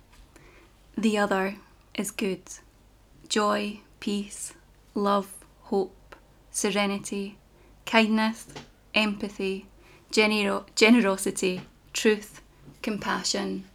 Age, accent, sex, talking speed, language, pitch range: 20-39, British, female, 60 wpm, English, 180-205 Hz